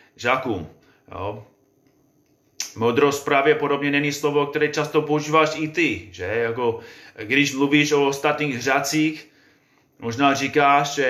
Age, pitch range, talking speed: 30-49, 130-155 Hz, 115 wpm